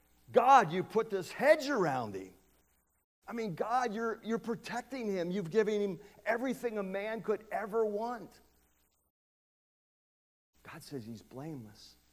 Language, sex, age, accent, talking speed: English, male, 50-69, American, 135 wpm